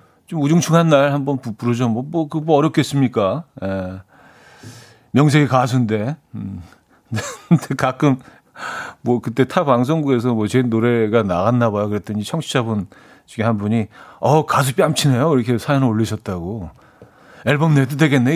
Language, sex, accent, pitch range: Korean, male, native, 110-145 Hz